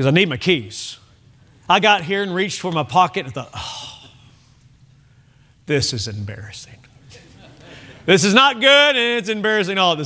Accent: American